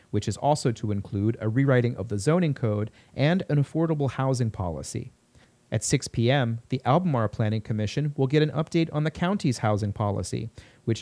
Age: 30-49